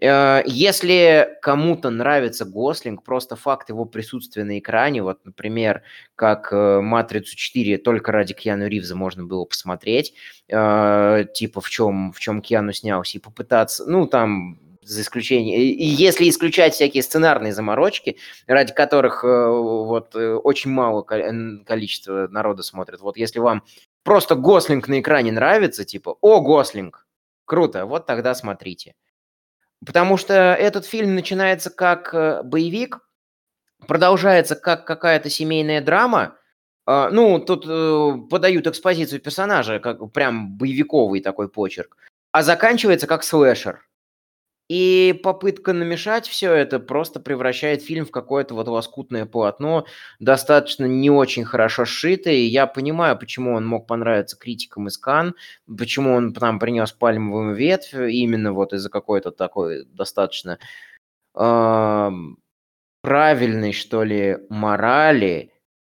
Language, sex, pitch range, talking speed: Russian, male, 105-160 Hz, 120 wpm